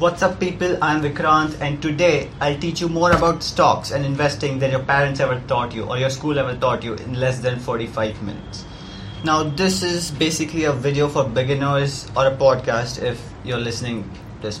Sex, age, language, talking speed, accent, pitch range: male, 20-39, English, 195 wpm, Indian, 115-145 Hz